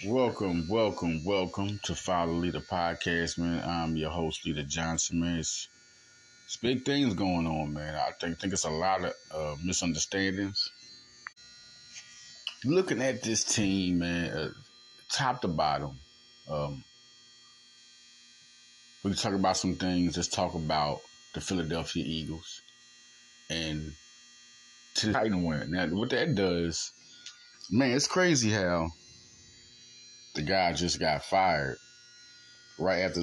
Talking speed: 130 wpm